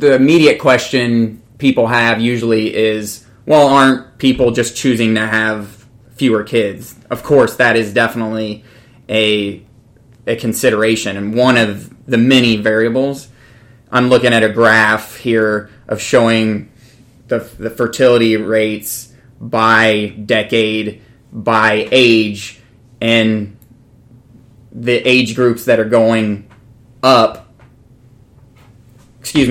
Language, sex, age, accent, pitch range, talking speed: English, male, 20-39, American, 110-125 Hz, 110 wpm